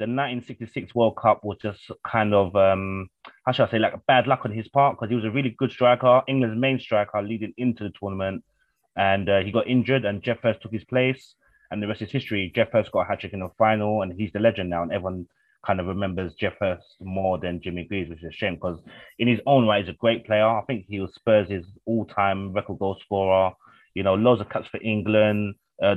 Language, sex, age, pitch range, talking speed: English, male, 20-39, 95-115 Hz, 240 wpm